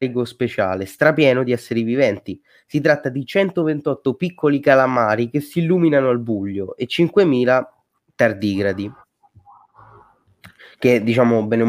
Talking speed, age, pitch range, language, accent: 120 wpm, 20-39, 115-150 Hz, Italian, native